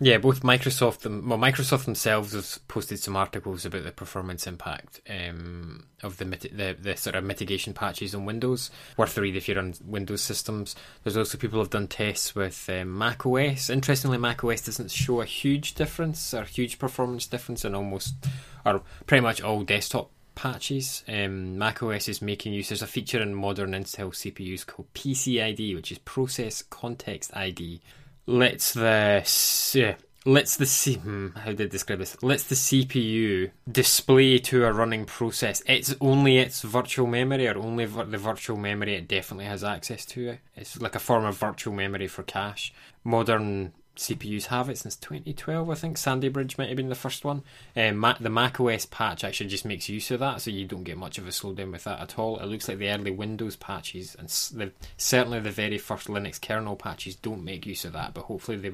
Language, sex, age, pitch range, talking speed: English, male, 10-29, 100-125 Hz, 190 wpm